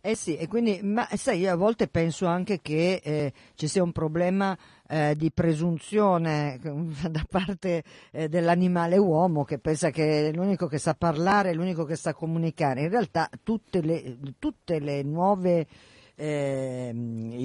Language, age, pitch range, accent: Italian, 50-69, 135-175 Hz, native